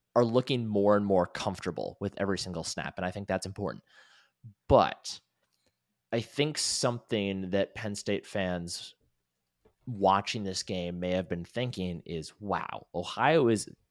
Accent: American